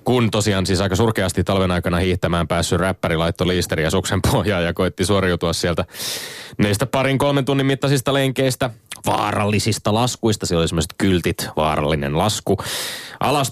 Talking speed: 140 wpm